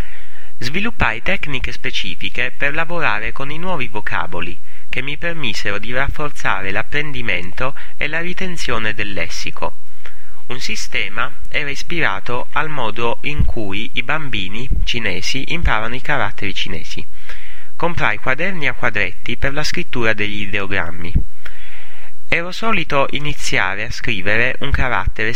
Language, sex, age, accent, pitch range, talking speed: Italian, male, 30-49, native, 100-140 Hz, 120 wpm